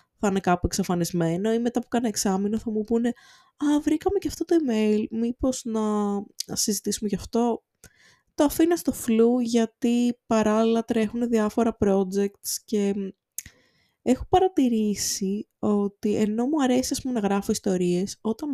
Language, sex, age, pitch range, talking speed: Greek, female, 20-39, 190-240 Hz, 145 wpm